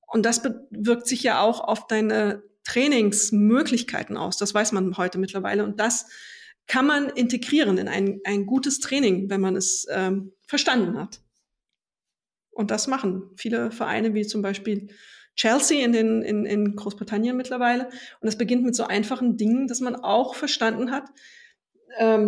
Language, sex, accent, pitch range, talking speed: German, female, German, 205-240 Hz, 160 wpm